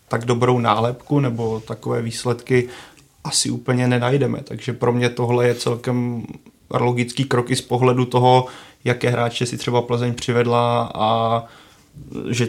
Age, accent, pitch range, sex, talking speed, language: 30-49, native, 115-125 Hz, male, 135 wpm, Czech